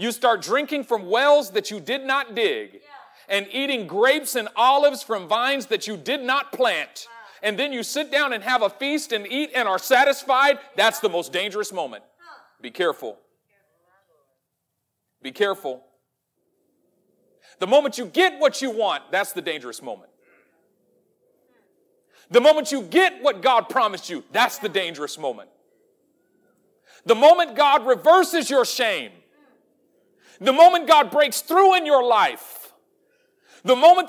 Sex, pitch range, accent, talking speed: male, 210-305 Hz, American, 150 wpm